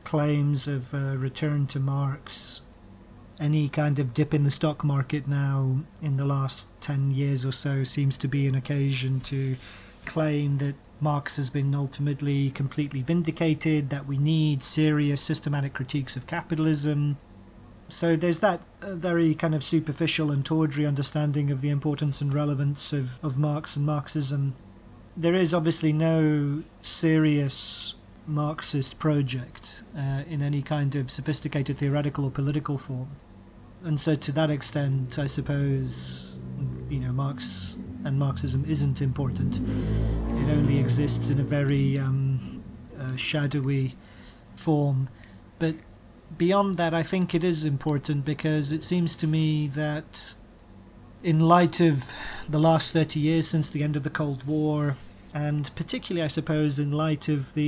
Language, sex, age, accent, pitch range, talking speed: English, male, 40-59, British, 135-155 Hz, 145 wpm